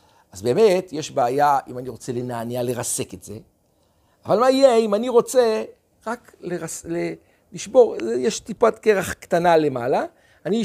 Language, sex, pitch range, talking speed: Hebrew, male, 135-220 Hz, 150 wpm